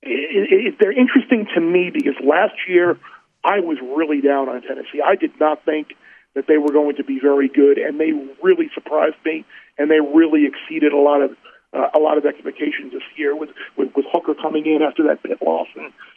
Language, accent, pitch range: English, American, 145-185 Hz